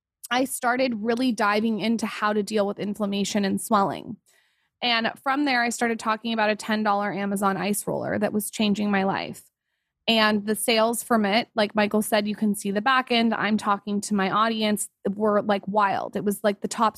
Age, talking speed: 20-39, 200 wpm